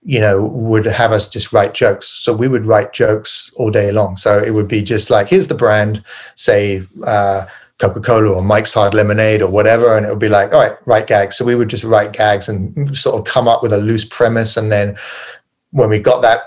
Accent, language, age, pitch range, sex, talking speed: British, English, 30-49, 100-115 Hz, male, 235 wpm